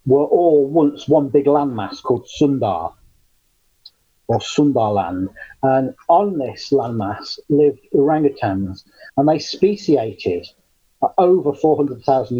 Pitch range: 125-145 Hz